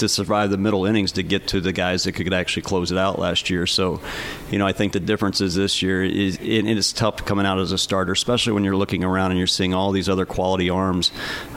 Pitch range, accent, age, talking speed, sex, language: 95-100 Hz, American, 40-59, 265 wpm, male, English